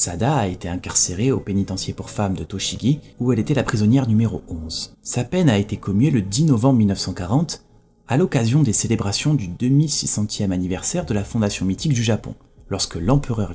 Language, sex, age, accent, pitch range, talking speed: French, male, 30-49, French, 100-135 Hz, 180 wpm